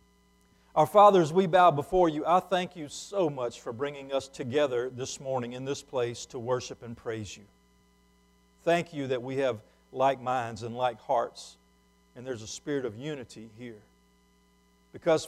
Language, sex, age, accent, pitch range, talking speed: English, male, 50-69, American, 140-200 Hz, 170 wpm